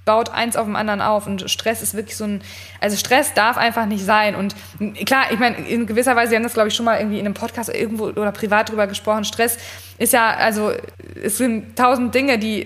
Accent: German